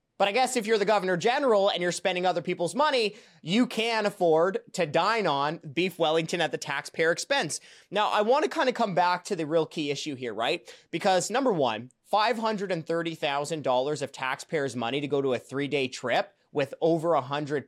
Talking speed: 195 wpm